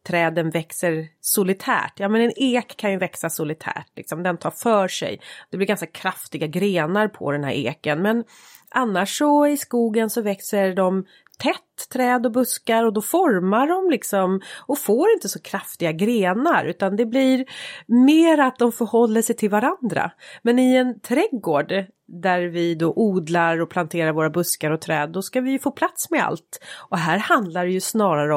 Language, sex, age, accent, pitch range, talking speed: Swedish, female, 30-49, native, 170-235 Hz, 180 wpm